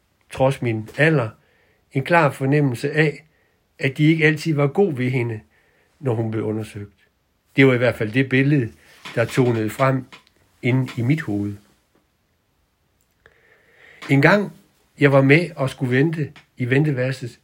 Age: 60-79